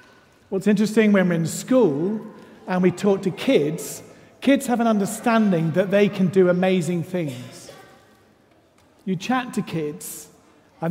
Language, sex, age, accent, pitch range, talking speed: English, male, 40-59, British, 175-220 Hz, 145 wpm